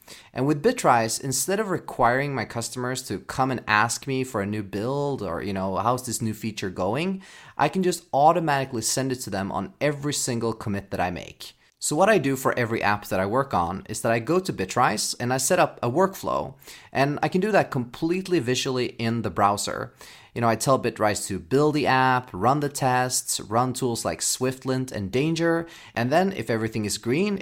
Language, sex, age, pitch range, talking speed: English, male, 30-49, 110-145 Hz, 210 wpm